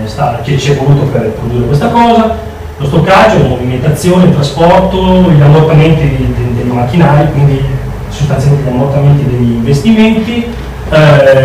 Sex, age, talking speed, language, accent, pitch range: male, 30-49, 135 wpm, Italian, native, 125-160 Hz